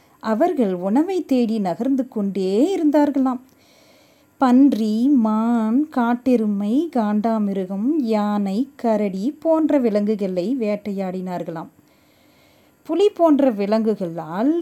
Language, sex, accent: Tamil, female, native